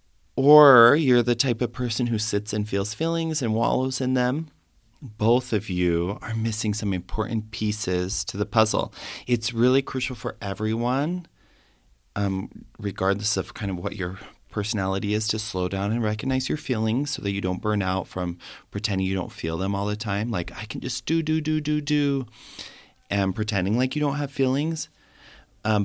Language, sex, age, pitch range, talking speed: English, male, 30-49, 95-120 Hz, 185 wpm